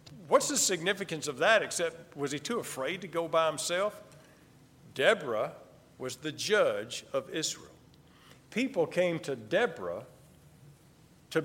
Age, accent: 50-69, American